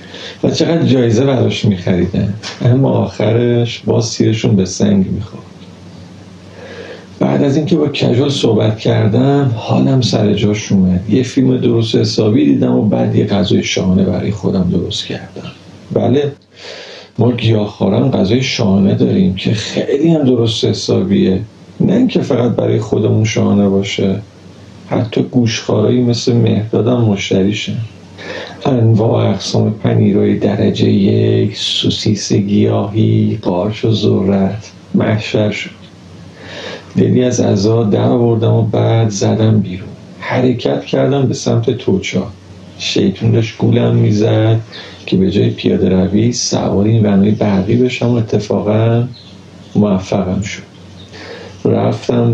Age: 50-69